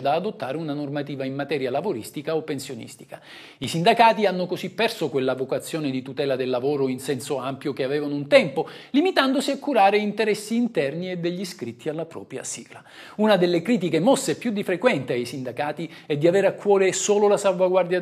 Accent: native